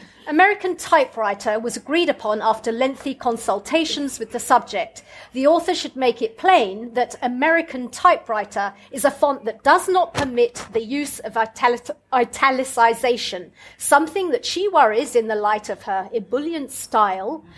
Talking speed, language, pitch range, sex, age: 145 wpm, English, 220-305 Hz, female, 40-59